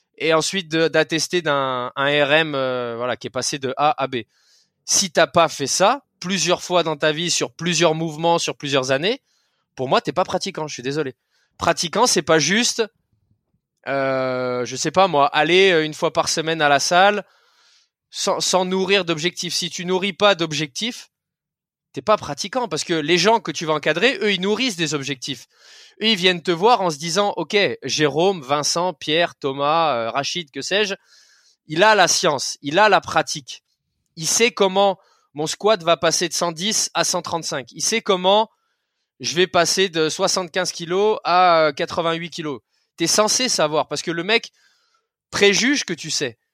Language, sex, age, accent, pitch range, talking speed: French, male, 20-39, French, 150-195 Hz, 185 wpm